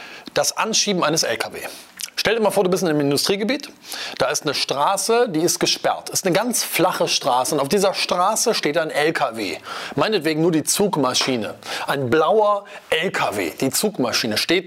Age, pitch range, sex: 30-49, 155-215 Hz, male